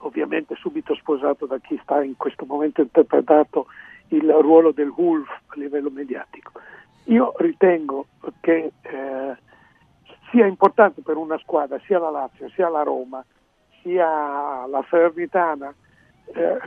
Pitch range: 155-220 Hz